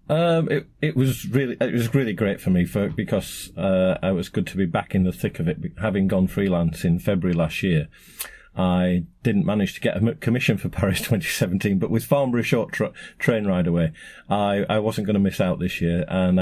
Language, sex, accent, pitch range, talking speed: English, male, British, 90-120 Hz, 220 wpm